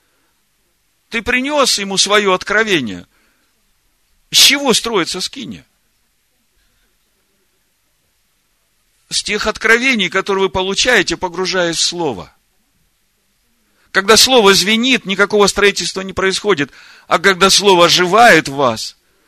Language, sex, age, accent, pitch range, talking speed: Russian, male, 50-69, native, 140-210 Hz, 95 wpm